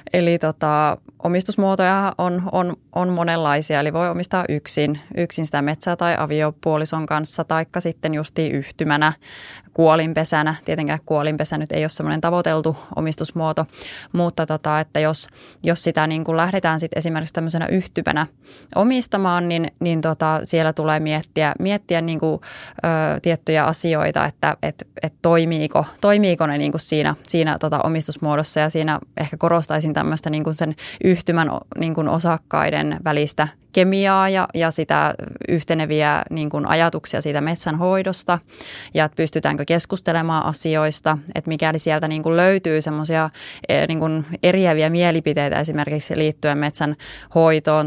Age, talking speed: 20-39, 130 wpm